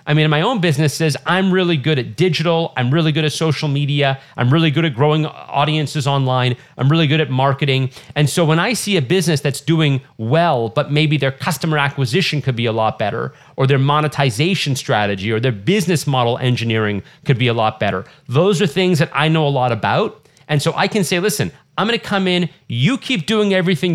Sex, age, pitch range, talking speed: male, 40-59, 135-170 Hz, 215 wpm